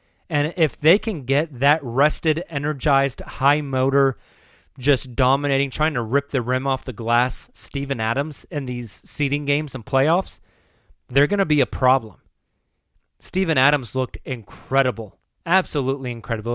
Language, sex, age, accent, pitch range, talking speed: English, male, 20-39, American, 120-150 Hz, 145 wpm